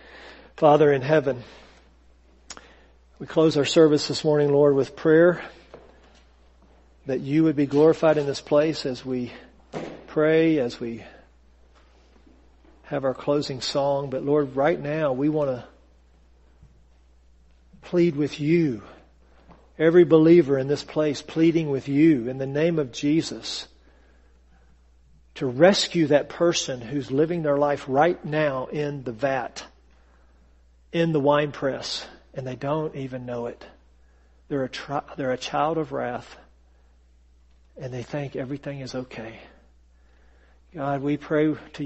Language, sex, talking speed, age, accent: English, male, 130 wpm, 50-69, American